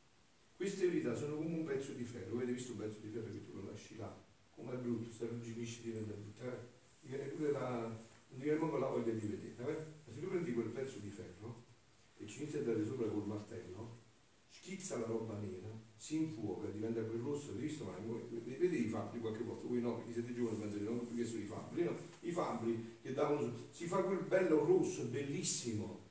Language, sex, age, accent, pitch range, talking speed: Italian, male, 40-59, native, 110-170 Hz, 205 wpm